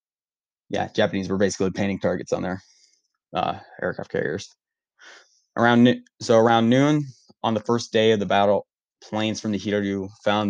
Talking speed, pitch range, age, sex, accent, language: 160 wpm, 95-110 Hz, 20-39, male, American, English